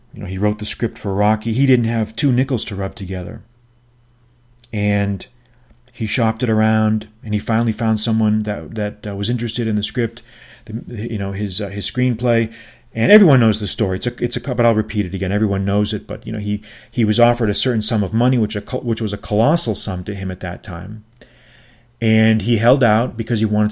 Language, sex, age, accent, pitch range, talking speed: English, male, 30-49, American, 110-125 Hz, 225 wpm